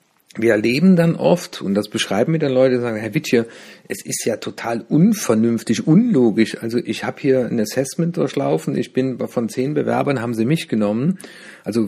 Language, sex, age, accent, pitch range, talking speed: German, male, 50-69, German, 115-175 Hz, 185 wpm